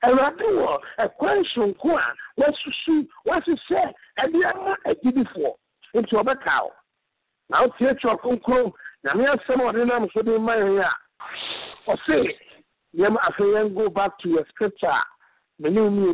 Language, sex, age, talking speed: English, male, 60-79, 140 wpm